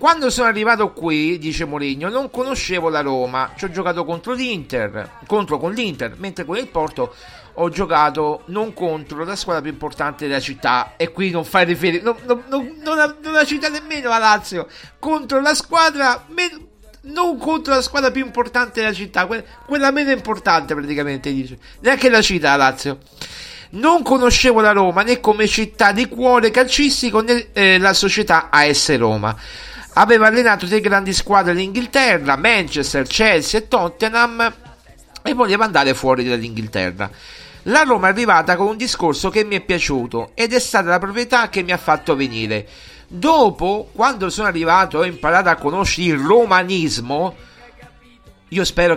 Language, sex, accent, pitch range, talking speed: Italian, male, native, 155-250 Hz, 165 wpm